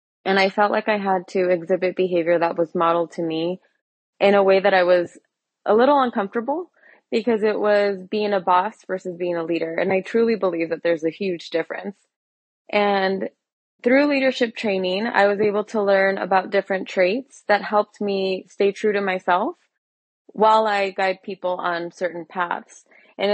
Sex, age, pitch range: female, 20-39, 180-215 Hz